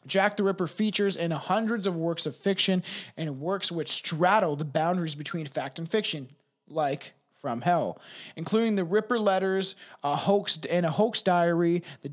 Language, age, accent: English, 20-39, American